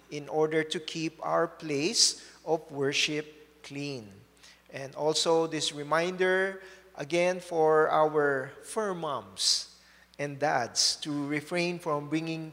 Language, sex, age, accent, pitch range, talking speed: English, male, 40-59, Filipino, 145-180 Hz, 115 wpm